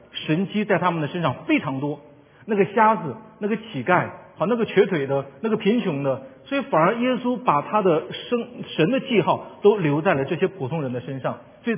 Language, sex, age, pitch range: Chinese, male, 50-69, 145-205 Hz